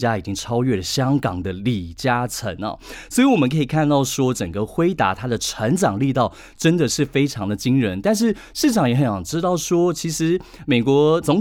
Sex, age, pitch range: male, 30-49, 110-170 Hz